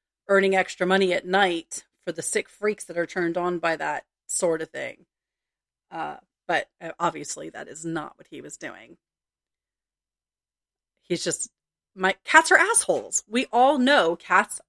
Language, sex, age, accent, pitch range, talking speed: English, female, 40-59, American, 170-200 Hz, 155 wpm